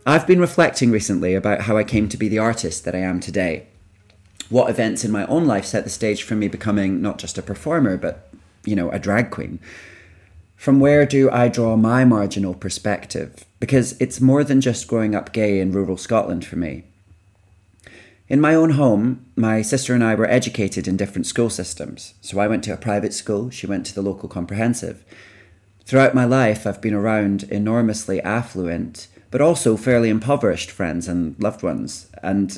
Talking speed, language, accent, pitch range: 190 wpm, English, British, 95-120 Hz